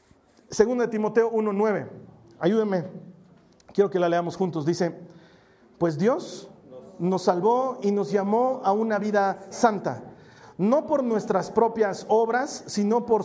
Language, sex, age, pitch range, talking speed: Spanish, male, 40-59, 175-225 Hz, 130 wpm